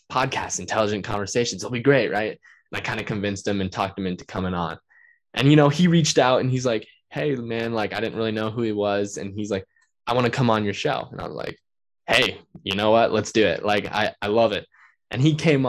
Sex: male